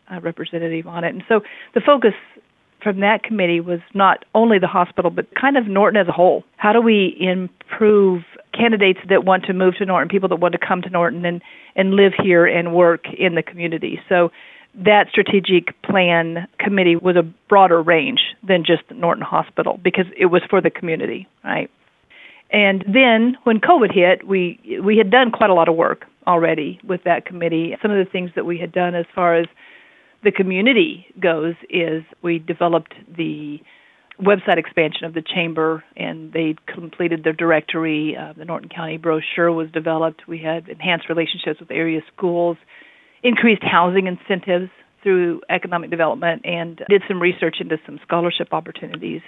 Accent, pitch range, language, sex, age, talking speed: American, 165-195 Hz, English, female, 50-69, 175 wpm